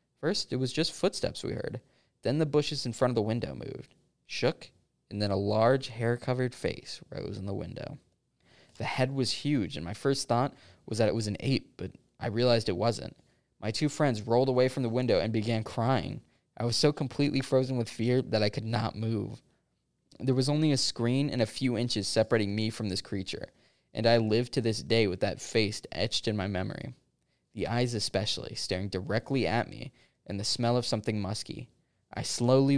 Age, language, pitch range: 20-39, English, 110-130 Hz